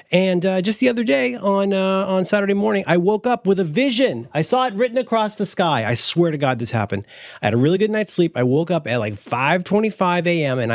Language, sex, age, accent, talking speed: English, male, 30-49, American, 250 wpm